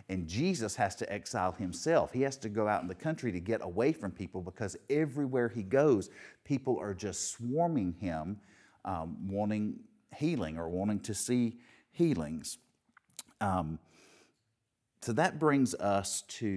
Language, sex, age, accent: English, male, 50-69, American